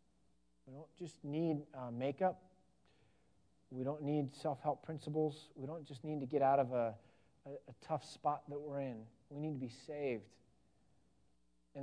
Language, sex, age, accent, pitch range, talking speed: English, male, 40-59, American, 135-170 Hz, 165 wpm